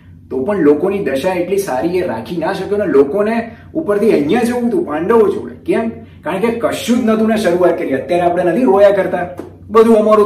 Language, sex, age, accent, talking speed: Gujarati, male, 30-49, native, 200 wpm